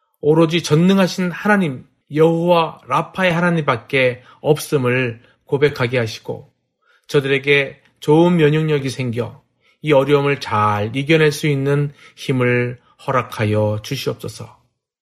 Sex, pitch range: male, 125-155 Hz